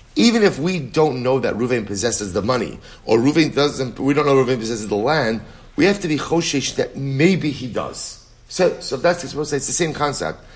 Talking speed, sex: 220 wpm, male